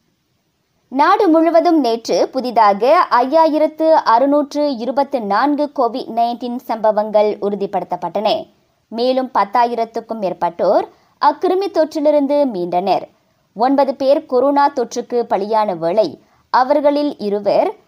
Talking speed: 85 wpm